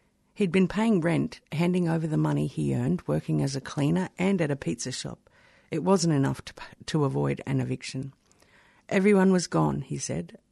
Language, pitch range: English, 145-185 Hz